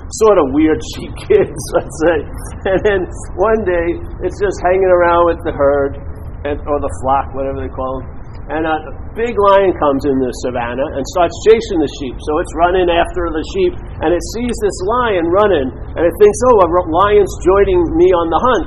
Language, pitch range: English, 175-270 Hz